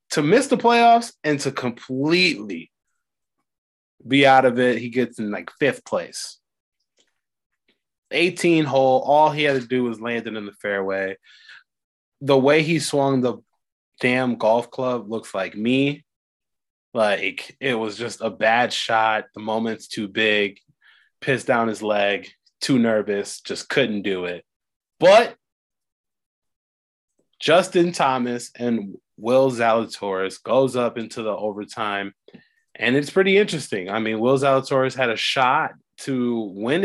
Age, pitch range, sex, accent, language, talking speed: 20-39, 110-135 Hz, male, American, English, 140 wpm